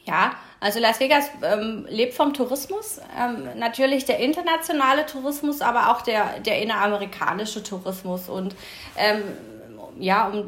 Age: 30-49